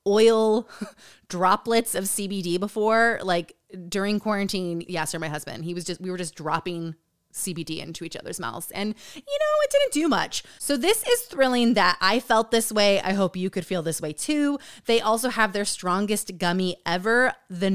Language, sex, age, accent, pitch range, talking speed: English, female, 20-39, American, 180-250 Hz, 190 wpm